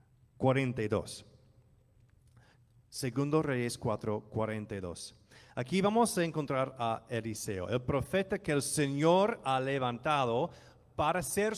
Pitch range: 120-150 Hz